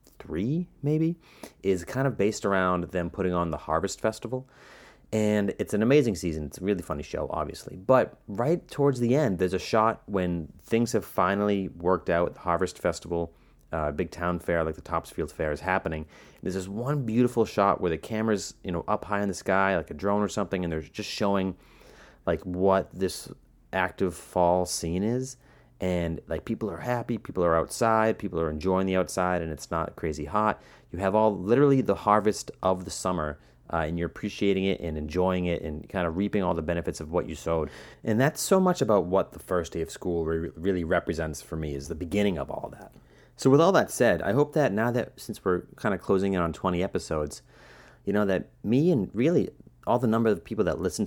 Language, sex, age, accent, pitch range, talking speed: English, male, 30-49, American, 85-110 Hz, 215 wpm